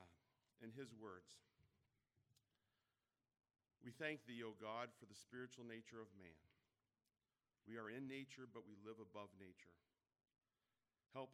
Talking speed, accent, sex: 120 wpm, American, male